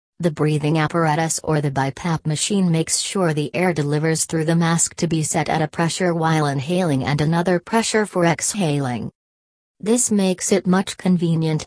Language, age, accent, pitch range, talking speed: English, 40-59, American, 145-175 Hz, 170 wpm